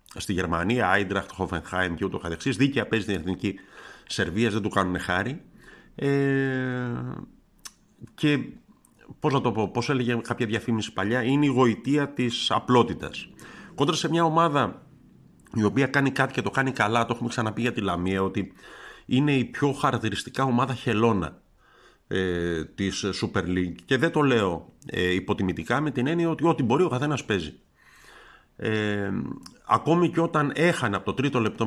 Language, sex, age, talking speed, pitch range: Greek, male, 50-69, 160 wpm, 95-130 Hz